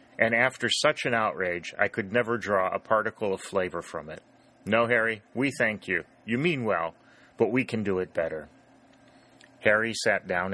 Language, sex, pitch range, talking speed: English, male, 100-130 Hz, 180 wpm